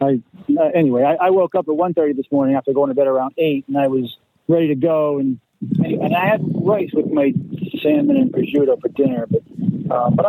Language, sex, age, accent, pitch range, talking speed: English, male, 40-59, American, 135-180 Hz, 225 wpm